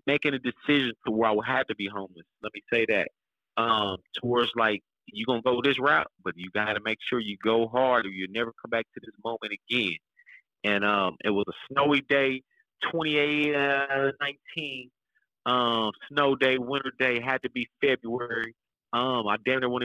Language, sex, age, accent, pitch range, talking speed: English, male, 30-49, American, 110-130 Hz, 200 wpm